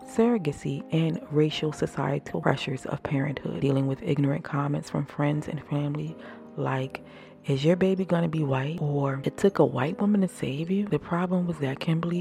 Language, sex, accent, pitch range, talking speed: English, female, American, 140-165 Hz, 175 wpm